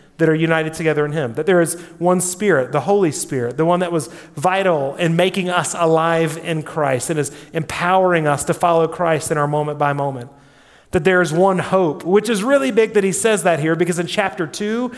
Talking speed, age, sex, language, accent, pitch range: 220 wpm, 30-49, male, English, American, 150-195 Hz